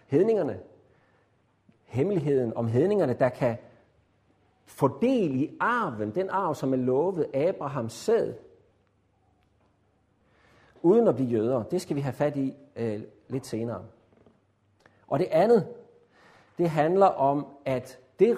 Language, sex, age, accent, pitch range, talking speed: Danish, male, 50-69, native, 105-145 Hz, 120 wpm